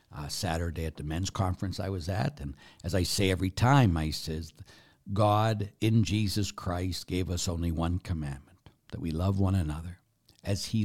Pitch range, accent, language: 80-100 Hz, American, English